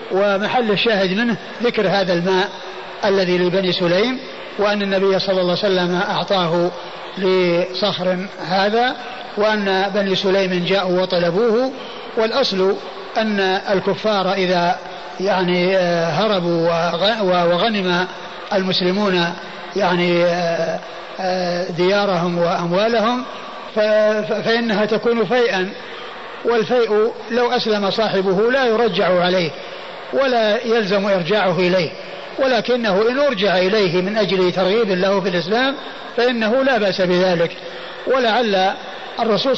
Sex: male